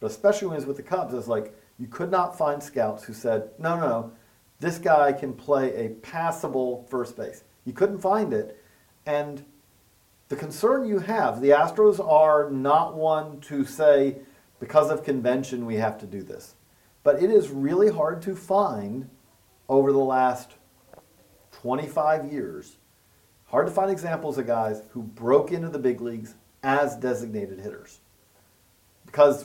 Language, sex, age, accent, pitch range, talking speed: English, male, 40-59, American, 120-175 Hz, 165 wpm